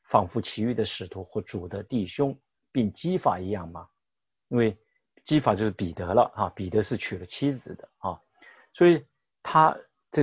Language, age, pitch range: Chinese, 50-69, 110-150 Hz